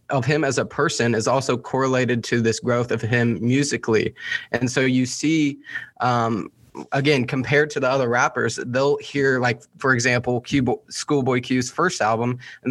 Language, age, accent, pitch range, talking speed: English, 20-39, American, 120-145 Hz, 165 wpm